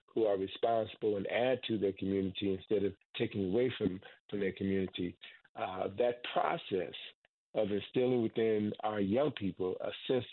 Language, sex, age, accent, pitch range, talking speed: English, male, 50-69, American, 100-125 Hz, 155 wpm